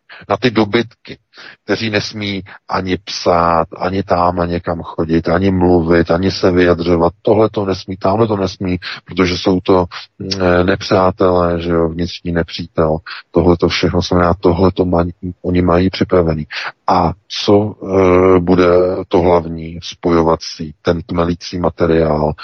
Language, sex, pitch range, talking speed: Czech, male, 85-95 Hz, 140 wpm